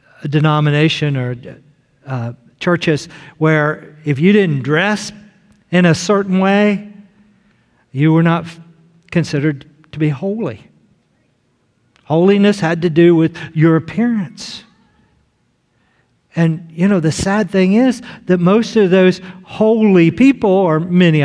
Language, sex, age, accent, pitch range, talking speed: English, male, 50-69, American, 145-200 Hz, 120 wpm